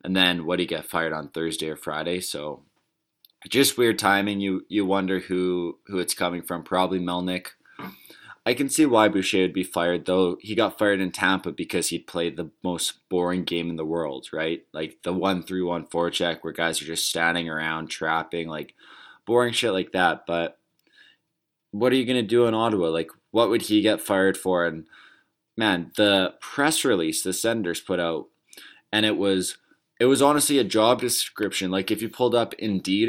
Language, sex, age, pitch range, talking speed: English, male, 20-39, 90-105 Hz, 190 wpm